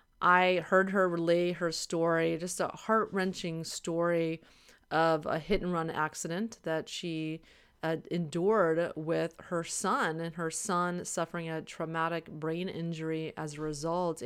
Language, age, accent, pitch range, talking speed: English, 30-49, American, 160-185 Hz, 135 wpm